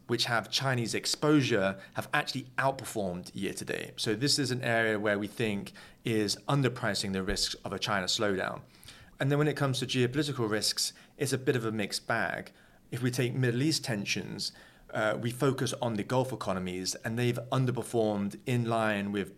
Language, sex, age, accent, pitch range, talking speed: English, male, 30-49, British, 105-130 Hz, 185 wpm